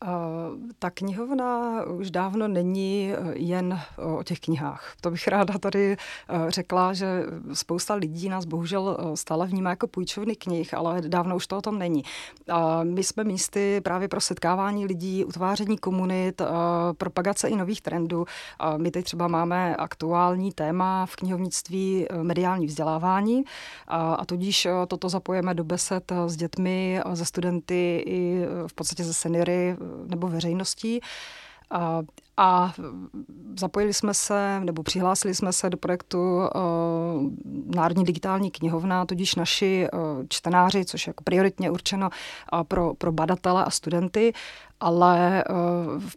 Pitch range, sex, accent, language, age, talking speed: 170-190 Hz, female, native, Czech, 30-49, 130 wpm